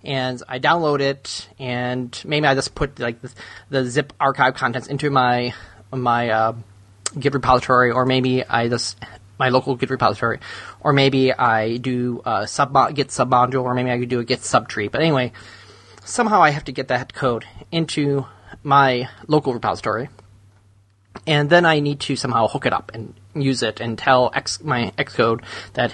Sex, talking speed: male, 175 wpm